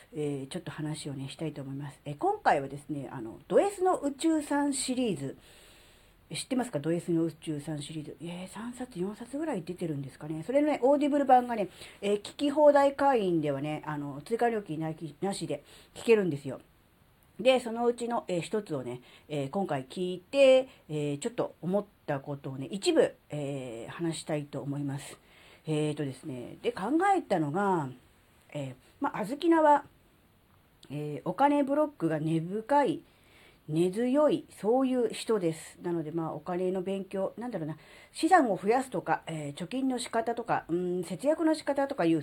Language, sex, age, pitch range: Japanese, female, 40-59, 150-250 Hz